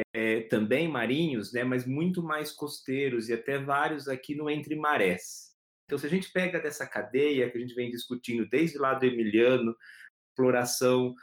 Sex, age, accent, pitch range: male, 30-49, Brazilian, 115-150 Hz